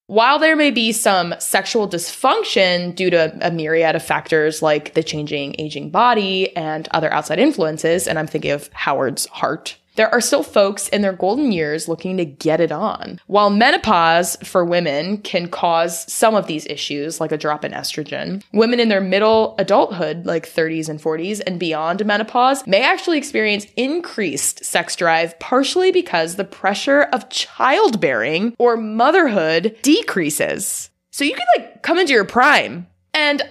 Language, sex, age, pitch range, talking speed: English, female, 20-39, 165-225 Hz, 165 wpm